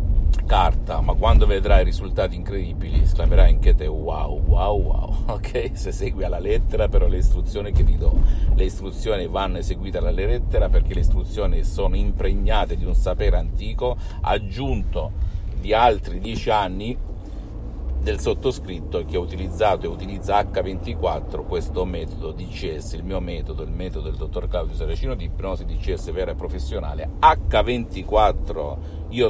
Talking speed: 150 wpm